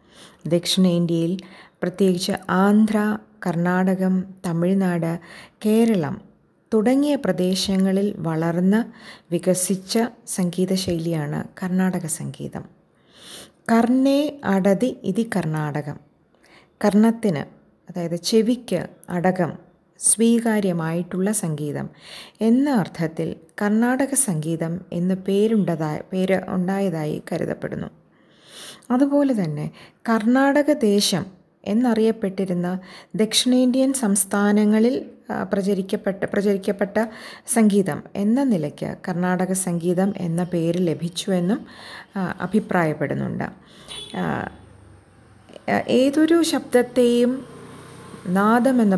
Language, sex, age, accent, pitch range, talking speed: Malayalam, female, 20-39, native, 175-220 Hz, 65 wpm